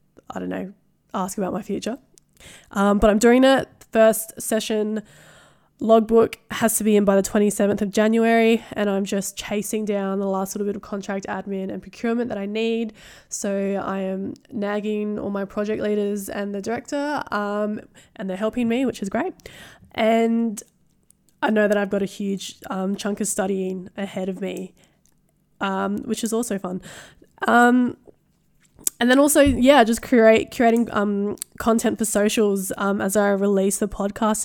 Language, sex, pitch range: English, female, 195-225 Hz